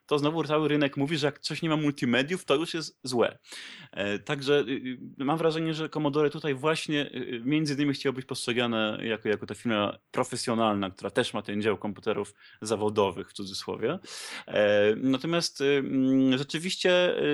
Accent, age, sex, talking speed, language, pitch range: native, 20-39, male, 150 wpm, Polish, 105-140 Hz